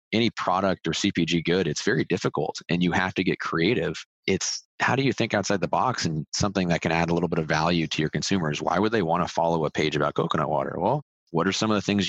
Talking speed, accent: 265 wpm, American